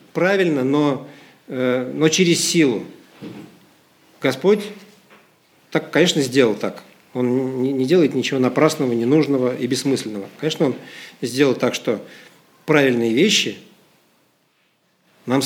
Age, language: 50-69, Russian